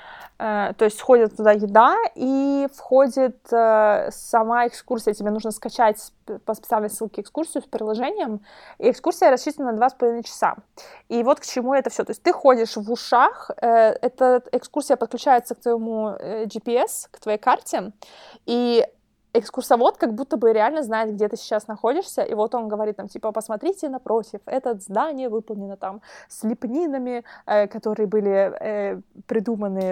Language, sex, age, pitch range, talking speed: Russian, female, 20-39, 215-250 Hz, 150 wpm